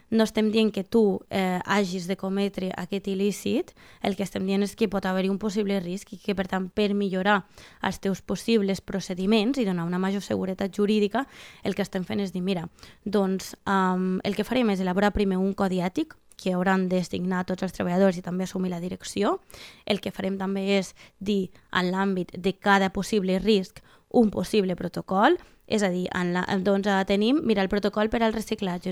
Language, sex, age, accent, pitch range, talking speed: Spanish, female, 20-39, Spanish, 190-210 Hz, 195 wpm